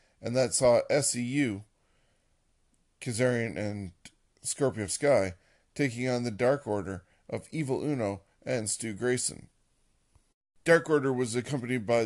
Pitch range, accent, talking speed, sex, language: 105-130 Hz, American, 120 wpm, male, English